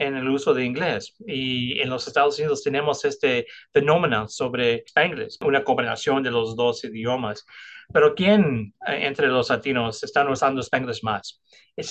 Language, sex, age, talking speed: English, male, 30-49, 160 wpm